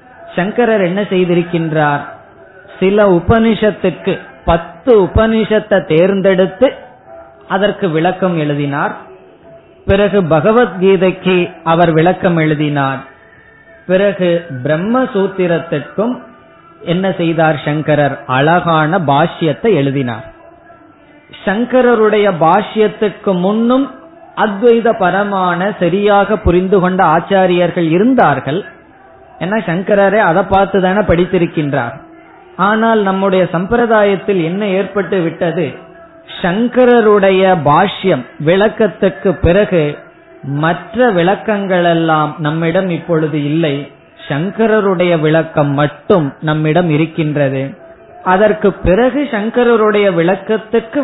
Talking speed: 70 wpm